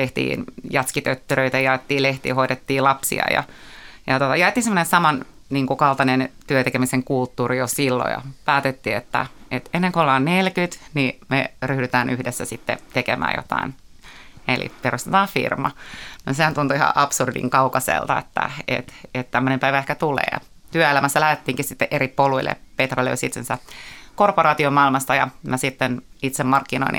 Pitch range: 130-155 Hz